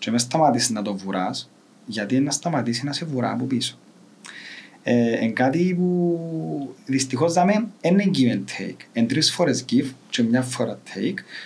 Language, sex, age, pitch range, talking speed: Greek, male, 30-49, 115-170 Hz, 170 wpm